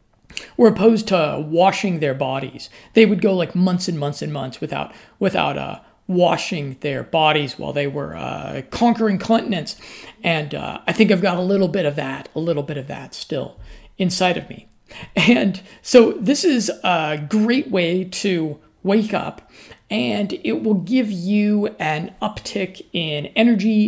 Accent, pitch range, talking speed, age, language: American, 180-220 Hz, 165 wpm, 50-69, English